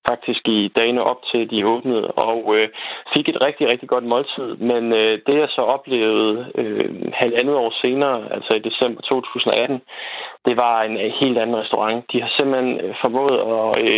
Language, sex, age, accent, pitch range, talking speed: Danish, male, 20-39, native, 110-130 Hz, 175 wpm